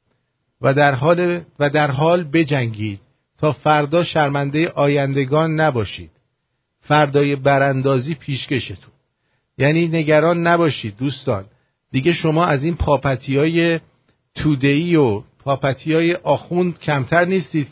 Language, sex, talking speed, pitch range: English, male, 110 wpm, 125-150 Hz